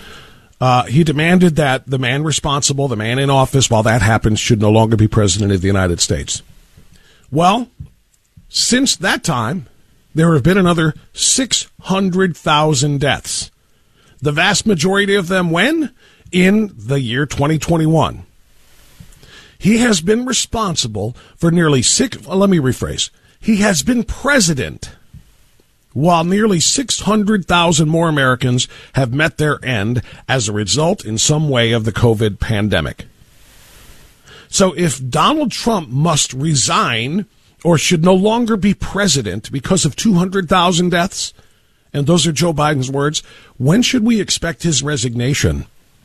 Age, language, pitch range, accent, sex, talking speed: 50-69, English, 120-180 Hz, American, male, 135 wpm